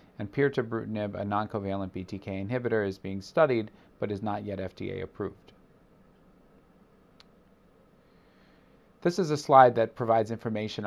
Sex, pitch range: male, 100-115 Hz